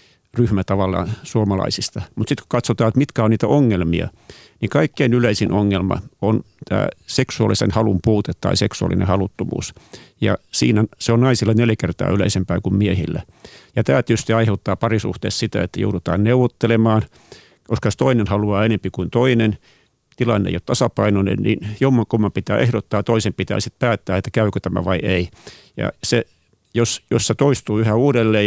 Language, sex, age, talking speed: Finnish, male, 50-69, 150 wpm